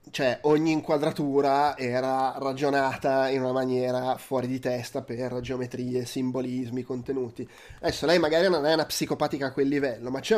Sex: male